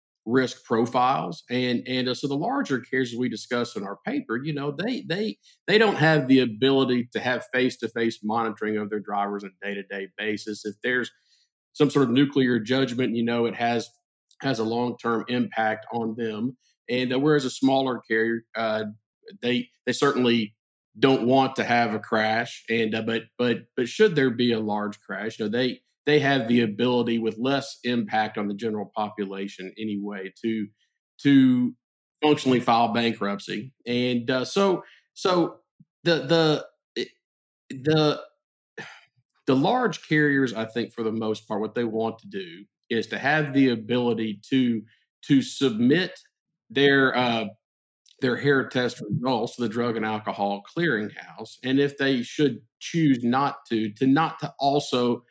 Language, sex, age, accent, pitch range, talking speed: English, male, 50-69, American, 110-135 Hz, 165 wpm